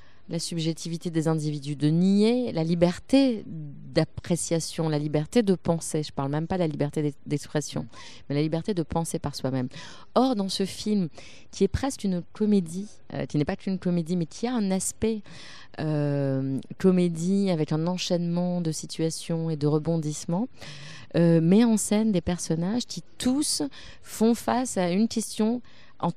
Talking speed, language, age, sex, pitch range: 165 wpm, French, 30-49, female, 150-195 Hz